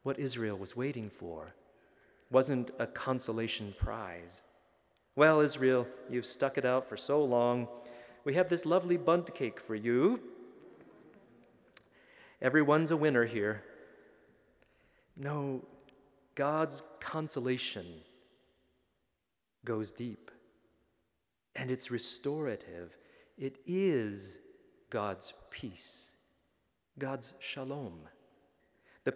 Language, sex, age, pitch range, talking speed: English, male, 30-49, 120-170 Hz, 95 wpm